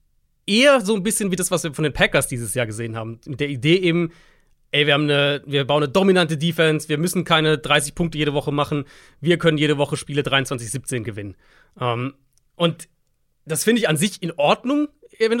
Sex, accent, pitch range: male, German, 135-175 Hz